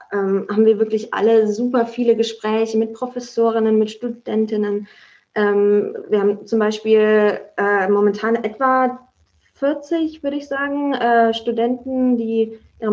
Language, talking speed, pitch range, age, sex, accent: German, 110 wpm, 220-245 Hz, 20-39, female, German